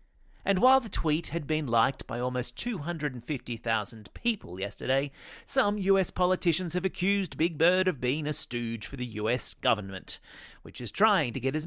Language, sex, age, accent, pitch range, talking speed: English, male, 30-49, Australian, 115-175 Hz, 170 wpm